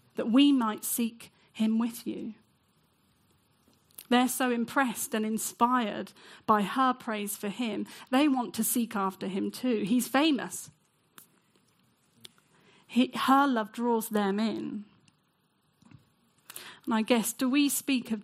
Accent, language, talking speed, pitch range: British, English, 125 wpm, 205-245 Hz